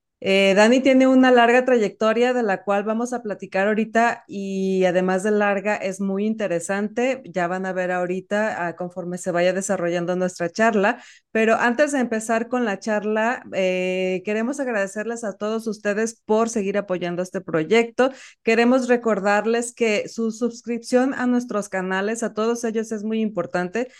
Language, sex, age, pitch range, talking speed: Spanish, female, 30-49, 185-225 Hz, 160 wpm